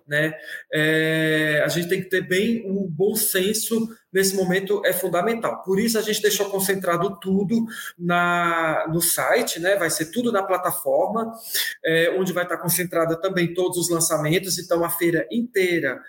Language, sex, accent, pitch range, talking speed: Portuguese, male, Brazilian, 165-195 Hz, 165 wpm